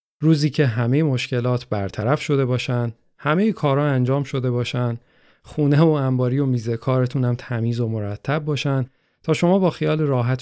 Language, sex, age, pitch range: Persian, male, 40-59, 115-140 Hz